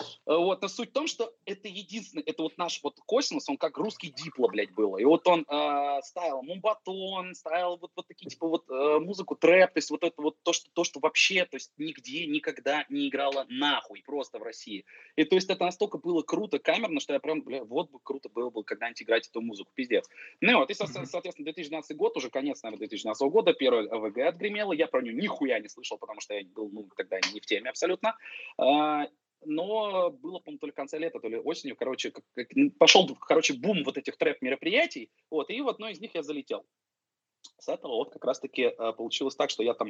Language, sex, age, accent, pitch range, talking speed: Russian, male, 20-39, native, 145-230 Hz, 220 wpm